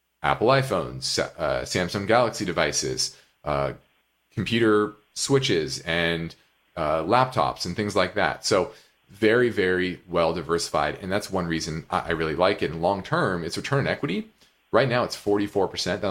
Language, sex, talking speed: English, male, 150 wpm